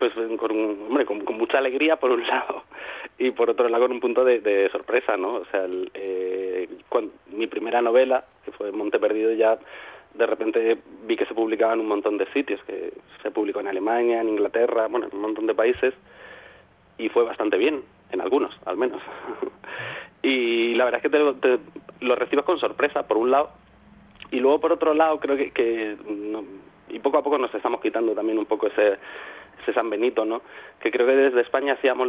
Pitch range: 105-130 Hz